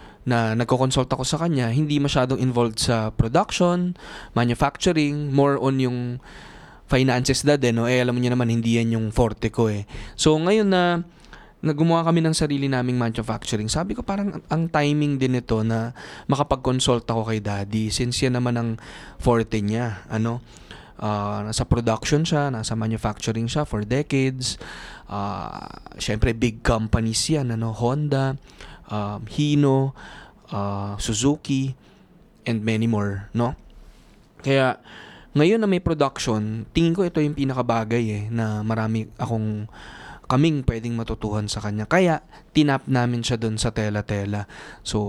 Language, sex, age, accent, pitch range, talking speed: Filipino, male, 20-39, native, 110-140 Hz, 140 wpm